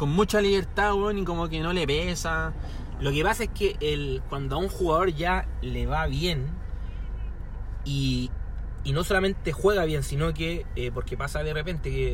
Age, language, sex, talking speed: 30-49, Spanish, male, 185 wpm